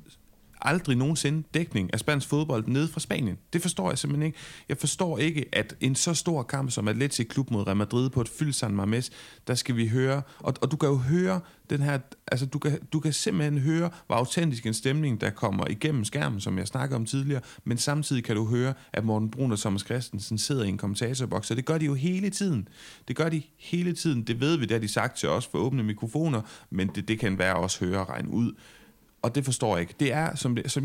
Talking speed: 240 wpm